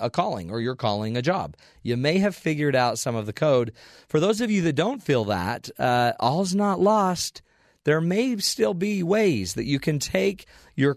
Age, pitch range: 40-59, 115-150 Hz